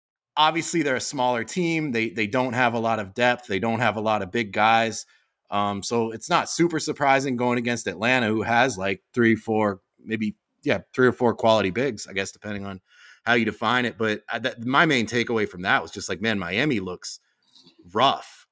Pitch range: 100-125 Hz